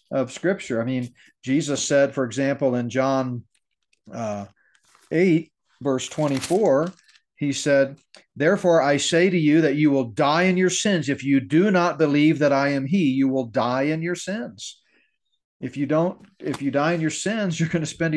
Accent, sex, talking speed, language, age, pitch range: American, male, 185 wpm, English, 40-59, 125-150 Hz